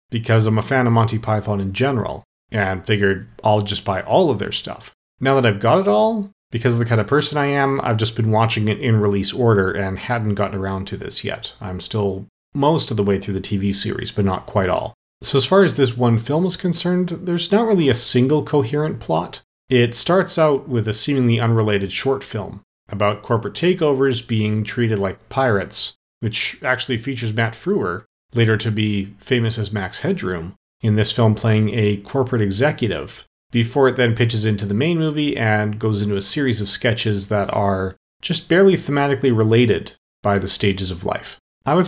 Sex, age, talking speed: male, 40-59, 200 wpm